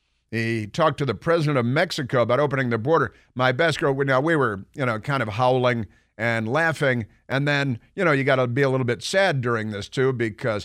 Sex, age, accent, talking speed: male, 50-69, American, 230 wpm